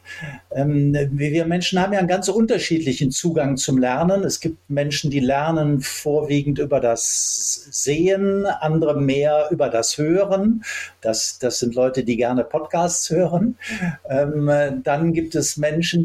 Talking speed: 135 wpm